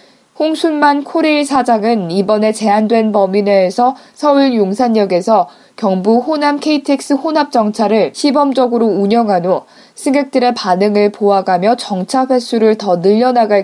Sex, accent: female, native